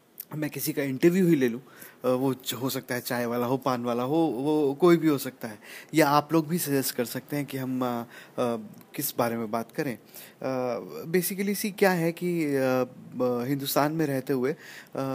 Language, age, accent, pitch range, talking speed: English, 30-49, Indian, 125-145 Hz, 205 wpm